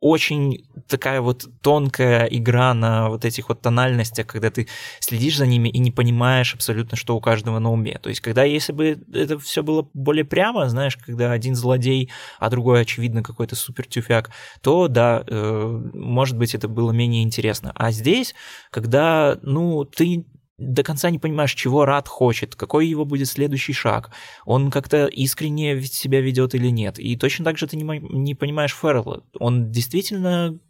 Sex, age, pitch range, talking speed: male, 20-39, 120-145 Hz, 170 wpm